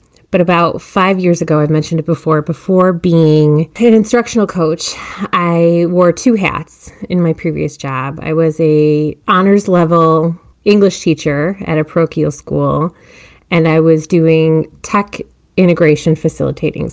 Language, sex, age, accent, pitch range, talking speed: English, female, 30-49, American, 155-185 Hz, 140 wpm